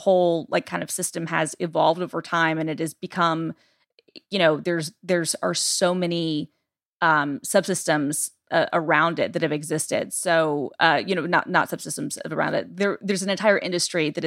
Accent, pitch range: American, 160-185 Hz